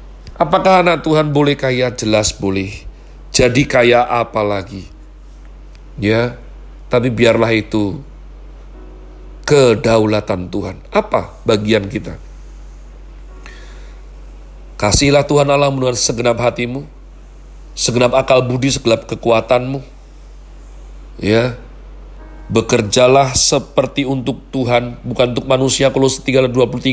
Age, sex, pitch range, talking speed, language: 40-59, male, 110-145 Hz, 90 wpm, Indonesian